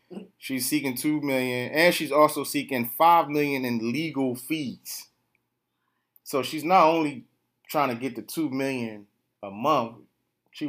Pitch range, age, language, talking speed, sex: 105-130 Hz, 30-49, English, 145 wpm, male